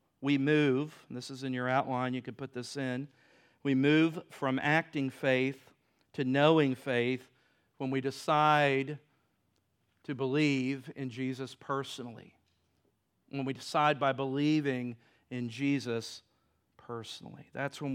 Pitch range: 130-185 Hz